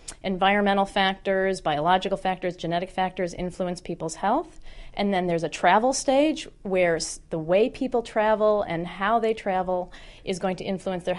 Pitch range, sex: 180-215 Hz, female